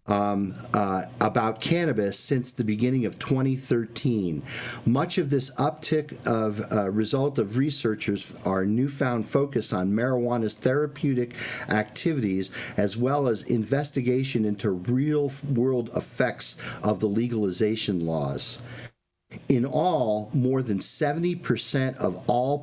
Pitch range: 105-130 Hz